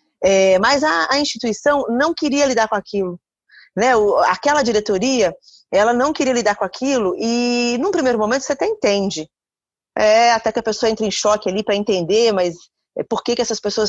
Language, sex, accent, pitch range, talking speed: Portuguese, female, Brazilian, 205-255 Hz, 175 wpm